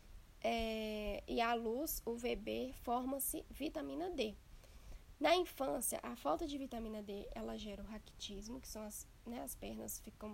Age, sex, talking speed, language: 10-29, female, 155 wpm, Portuguese